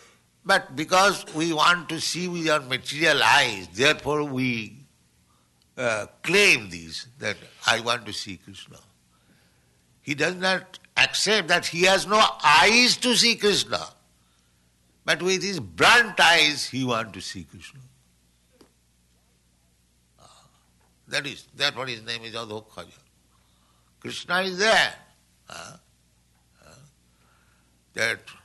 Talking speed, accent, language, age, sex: 115 wpm, Indian, English, 60-79, male